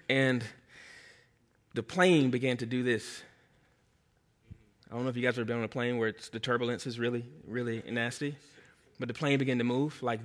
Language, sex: English, male